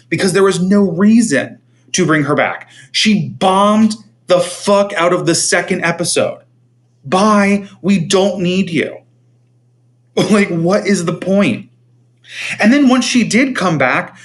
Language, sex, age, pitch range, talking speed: English, male, 30-49, 135-220 Hz, 145 wpm